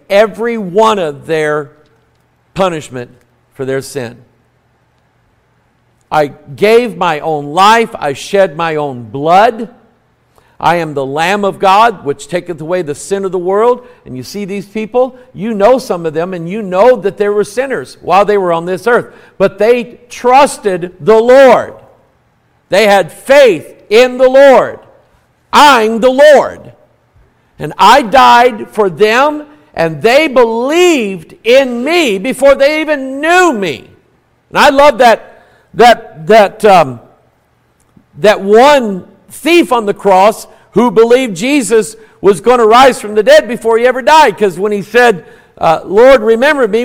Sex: male